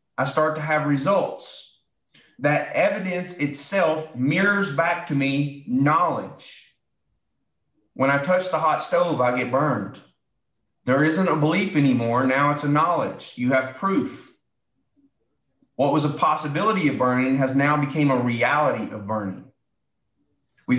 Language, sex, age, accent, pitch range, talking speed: English, male, 30-49, American, 125-160 Hz, 140 wpm